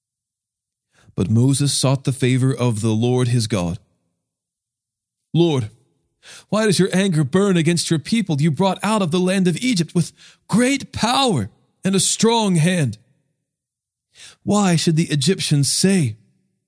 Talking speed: 140 wpm